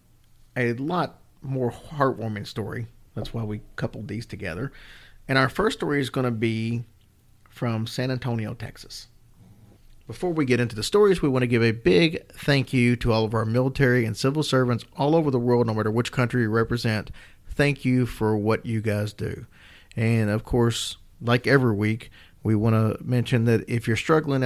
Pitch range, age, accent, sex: 110-125 Hz, 40-59, American, male